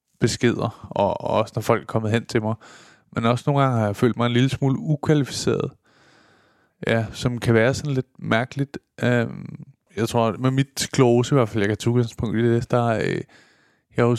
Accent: Danish